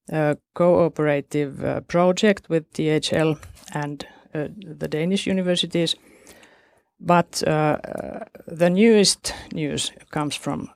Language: Finnish